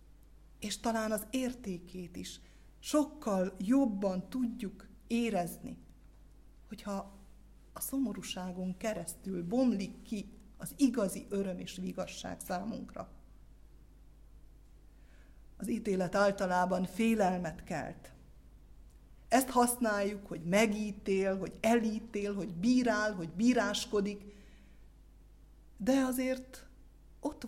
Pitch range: 185-230 Hz